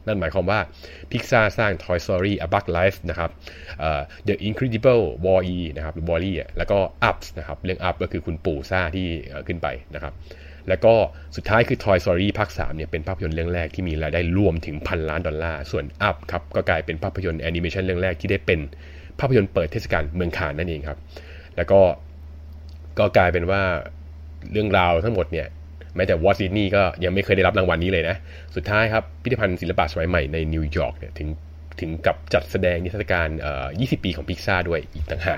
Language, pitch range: Thai, 80-95 Hz